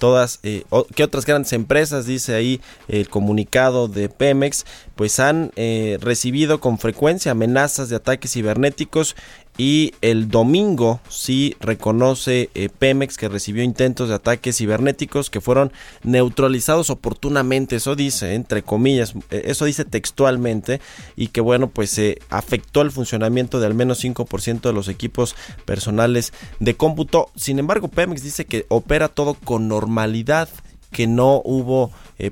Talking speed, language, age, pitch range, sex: 145 wpm, Spanish, 20-39, 105-135 Hz, male